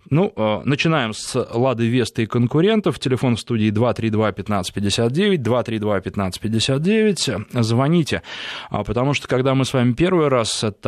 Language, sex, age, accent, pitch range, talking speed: Russian, male, 20-39, native, 100-130 Hz, 120 wpm